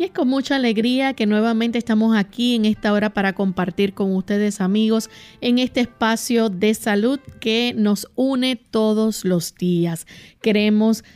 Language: Spanish